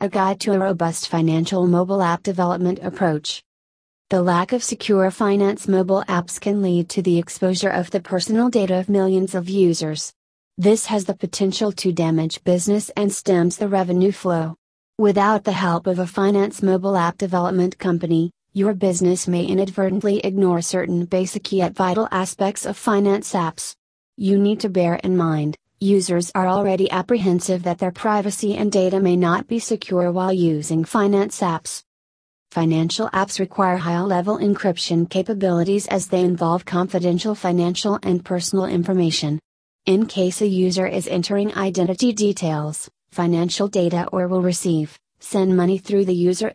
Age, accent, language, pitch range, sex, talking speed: 30-49, American, English, 175-200 Hz, female, 155 wpm